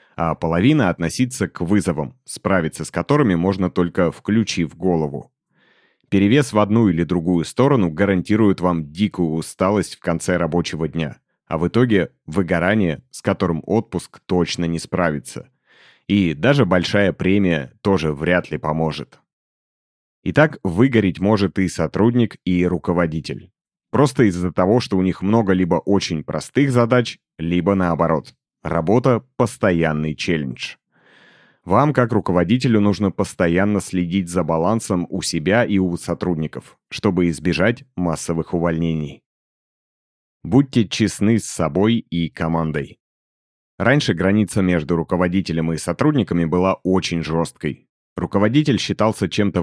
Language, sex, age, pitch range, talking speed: Russian, male, 30-49, 80-100 Hz, 125 wpm